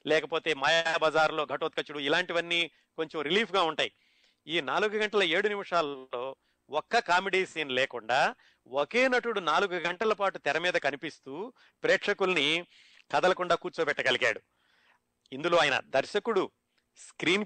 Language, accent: Telugu, native